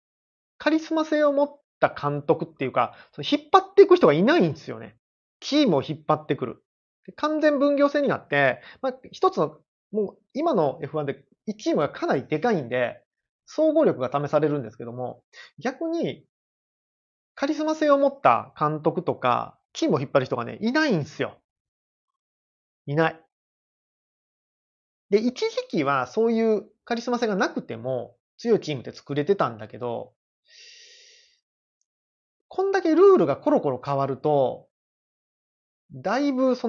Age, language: 30-49, Japanese